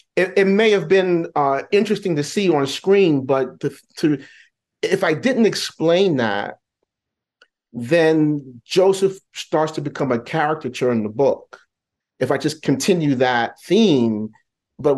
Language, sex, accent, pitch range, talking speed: English, male, American, 140-195 Hz, 145 wpm